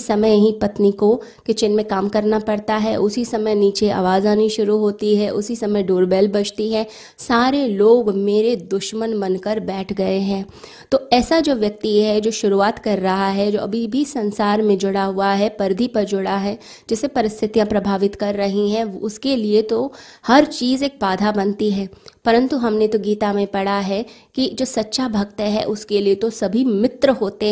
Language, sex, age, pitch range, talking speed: Hindi, female, 20-39, 205-235 Hz, 190 wpm